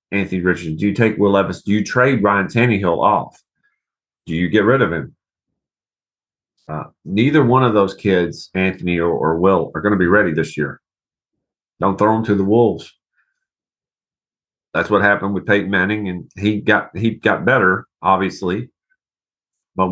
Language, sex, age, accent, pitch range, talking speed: English, male, 40-59, American, 85-110 Hz, 170 wpm